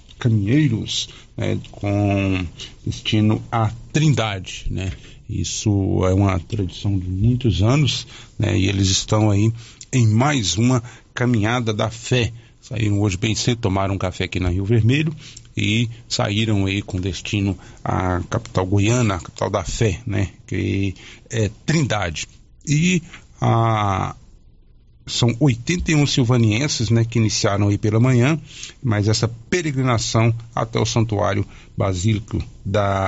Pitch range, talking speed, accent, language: 105-125 Hz, 130 wpm, Brazilian, Portuguese